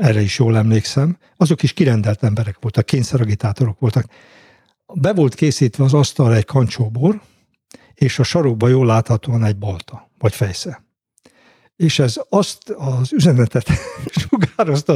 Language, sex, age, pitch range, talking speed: Hungarian, male, 60-79, 120-155 Hz, 135 wpm